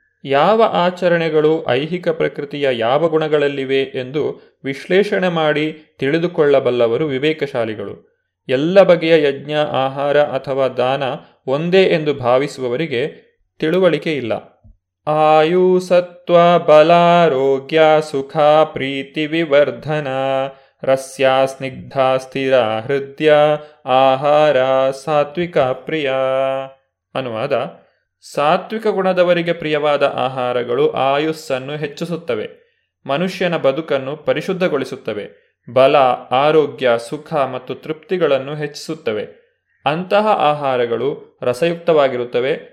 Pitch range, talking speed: 135-170 Hz, 75 wpm